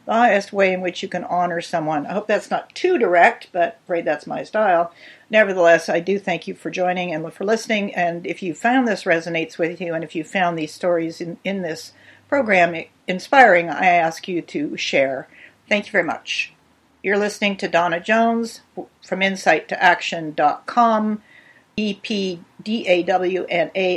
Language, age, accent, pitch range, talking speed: English, 50-69, American, 175-215 Hz, 170 wpm